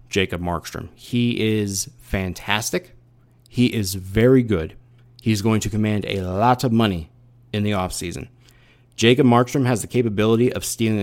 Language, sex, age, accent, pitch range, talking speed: English, male, 30-49, American, 100-125 Hz, 150 wpm